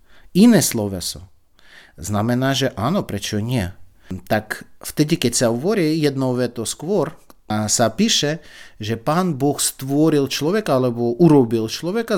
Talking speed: 125 wpm